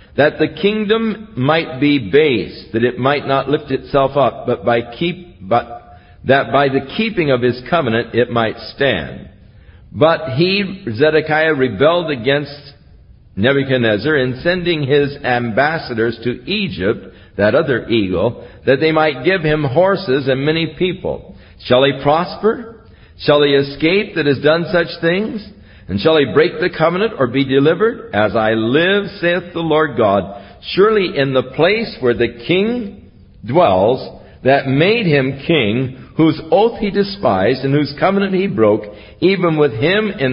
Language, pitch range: English, 120-170 Hz